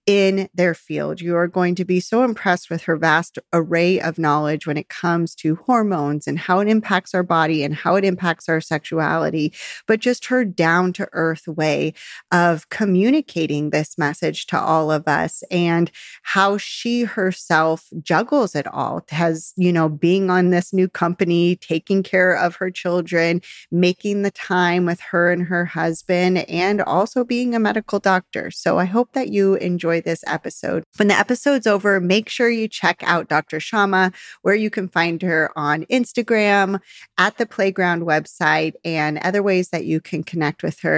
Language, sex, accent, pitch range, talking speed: English, female, American, 165-205 Hz, 175 wpm